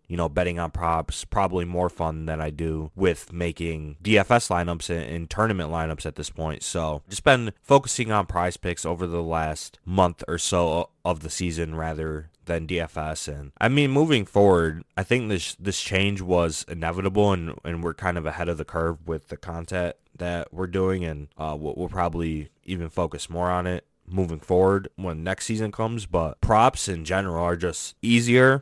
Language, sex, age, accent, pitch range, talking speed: English, male, 20-39, American, 80-95 Hz, 185 wpm